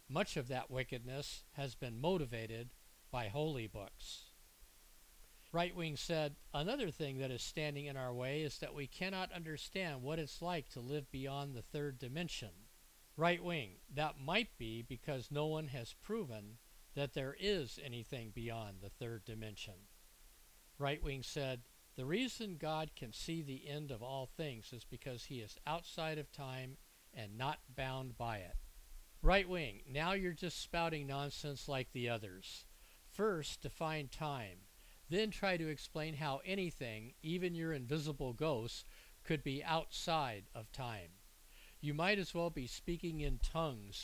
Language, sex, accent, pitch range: English, male, American, 120-160 Hz